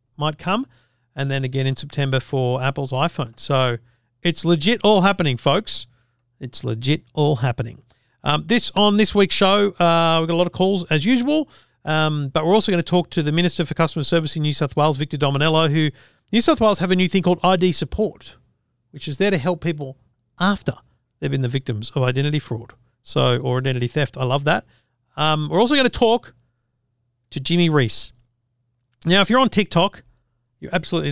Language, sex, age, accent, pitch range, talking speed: English, male, 40-59, Australian, 125-175 Hz, 195 wpm